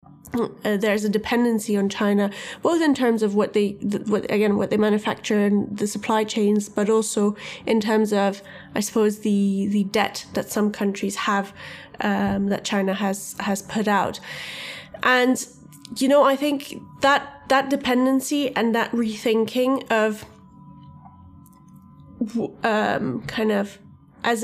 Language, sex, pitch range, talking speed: English, female, 205-230 Hz, 145 wpm